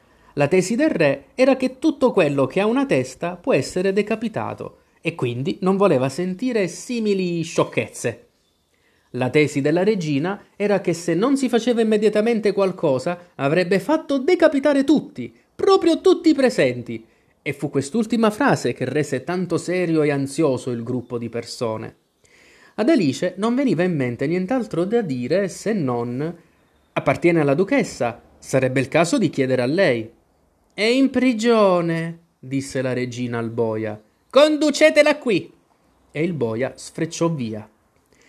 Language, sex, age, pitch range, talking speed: Italian, male, 30-49, 130-210 Hz, 145 wpm